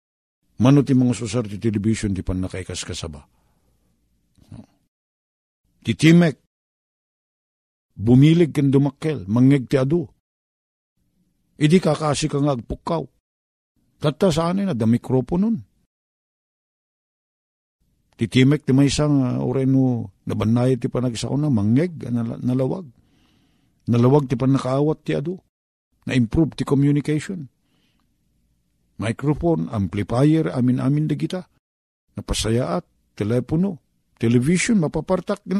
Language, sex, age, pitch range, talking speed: Filipino, male, 50-69, 110-150 Hz, 105 wpm